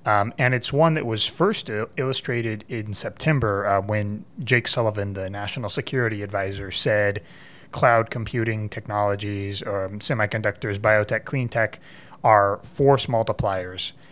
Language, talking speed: English, 125 wpm